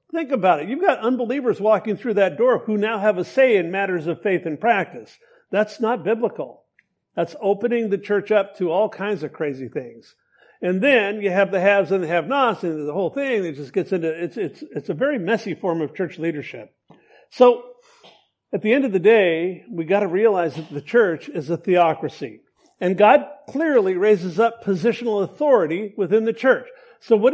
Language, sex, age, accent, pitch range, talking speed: English, male, 50-69, American, 190-265 Hz, 200 wpm